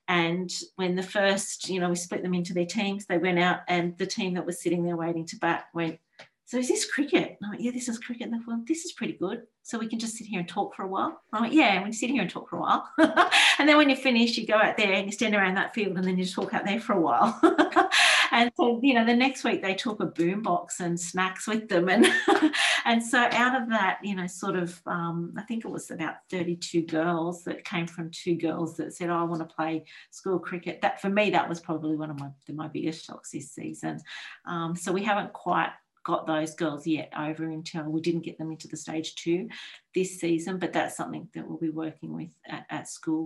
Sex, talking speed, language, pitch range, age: female, 255 wpm, English, 165-220 Hz, 40-59